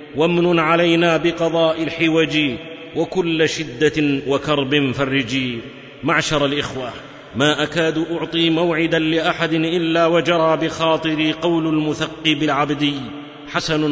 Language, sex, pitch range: Arabic, male, 145-165 Hz